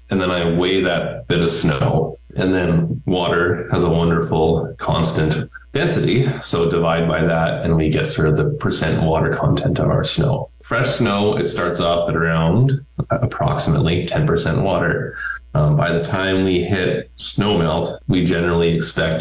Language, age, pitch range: English, 20-39, 80-105 Hz